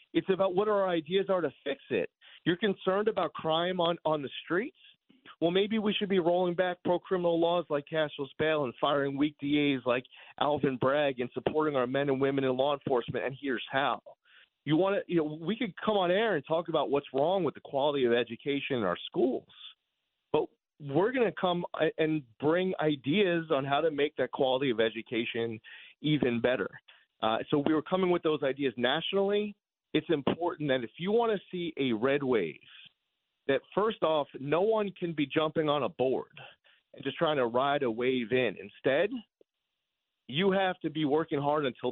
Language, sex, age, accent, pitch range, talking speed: English, male, 40-59, American, 130-170 Hz, 190 wpm